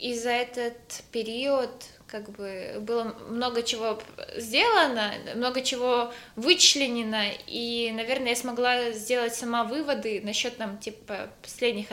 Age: 20-39